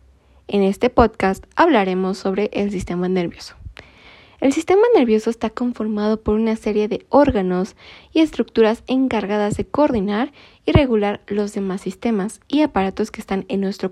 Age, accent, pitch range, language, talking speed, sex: 20-39, Mexican, 200-260 Hz, Spanish, 145 wpm, female